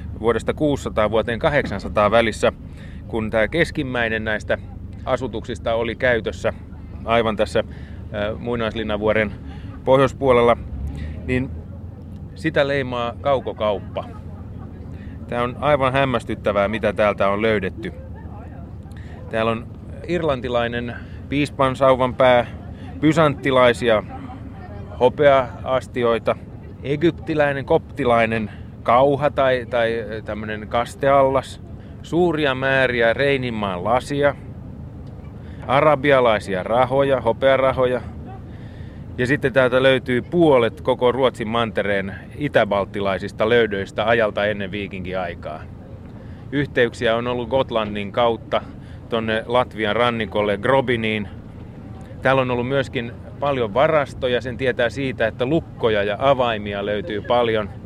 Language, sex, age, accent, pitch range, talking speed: Finnish, male, 30-49, native, 100-130 Hz, 90 wpm